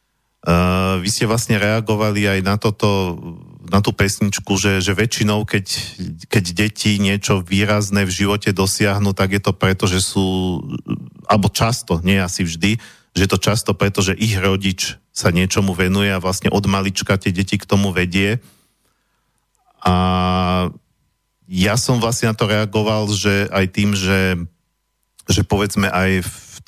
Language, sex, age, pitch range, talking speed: Slovak, male, 40-59, 95-105 Hz, 155 wpm